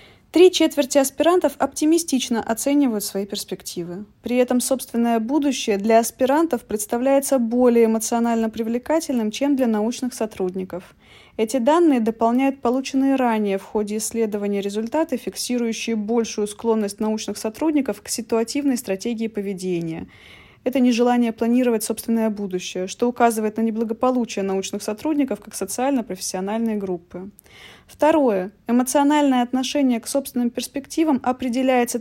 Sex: female